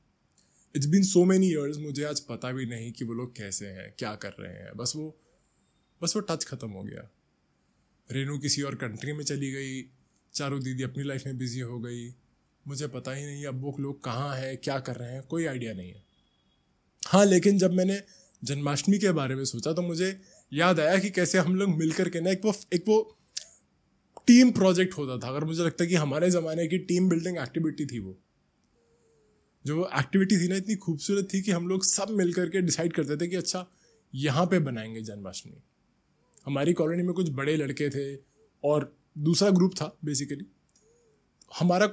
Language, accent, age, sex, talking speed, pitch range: Hindi, native, 20-39, male, 190 wpm, 125-180 Hz